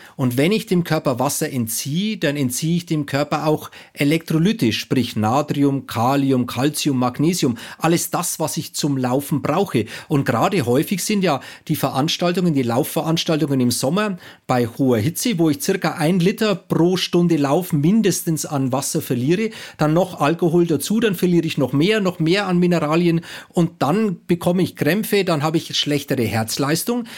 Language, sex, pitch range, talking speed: German, male, 140-185 Hz, 165 wpm